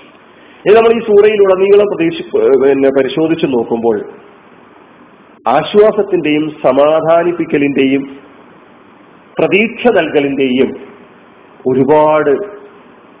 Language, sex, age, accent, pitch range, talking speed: Malayalam, male, 40-59, native, 130-180 Hz, 55 wpm